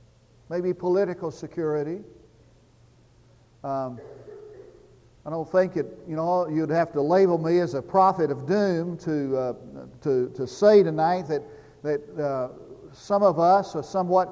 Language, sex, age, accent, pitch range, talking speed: English, male, 50-69, American, 145-195 Hz, 145 wpm